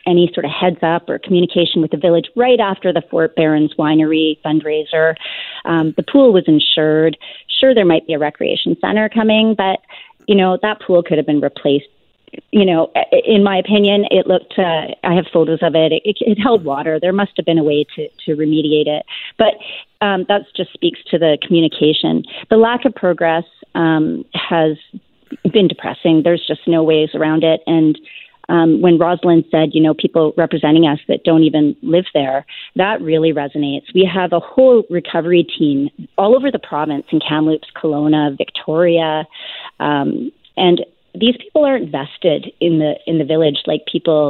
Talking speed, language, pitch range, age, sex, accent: 180 wpm, English, 155-190 Hz, 30-49, female, American